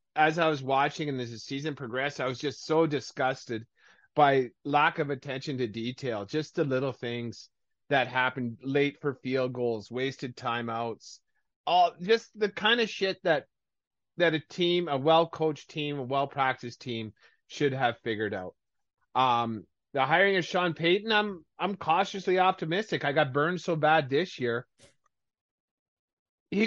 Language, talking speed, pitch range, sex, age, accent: English, 160 wpm, 120-165 Hz, male, 30-49, American